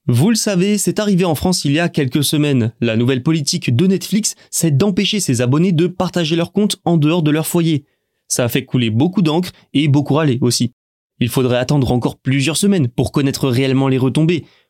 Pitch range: 130-180 Hz